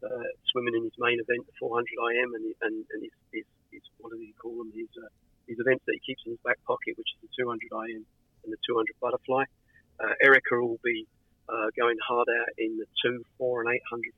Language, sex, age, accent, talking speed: English, male, 40-59, British, 230 wpm